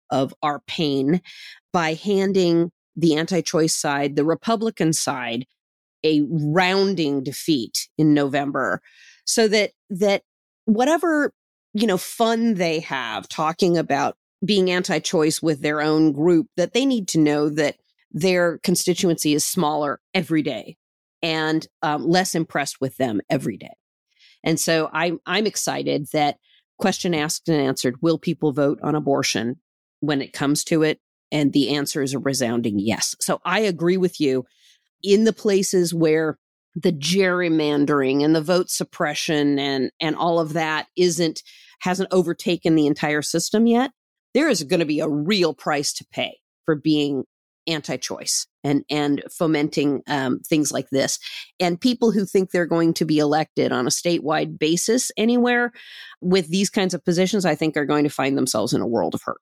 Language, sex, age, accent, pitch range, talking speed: English, female, 40-59, American, 150-185 Hz, 160 wpm